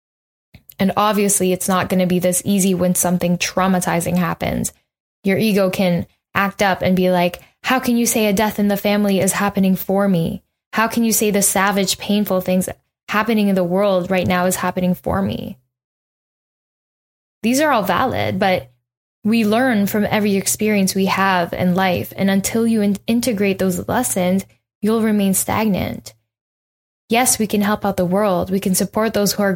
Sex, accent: female, American